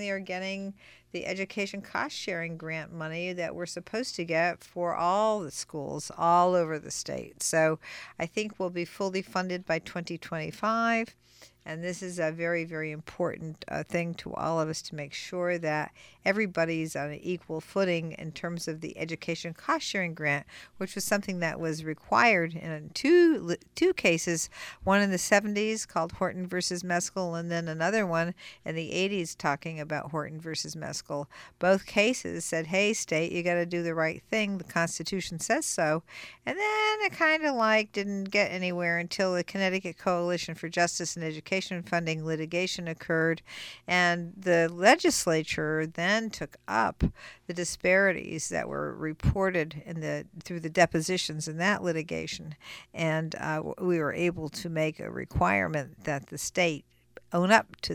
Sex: female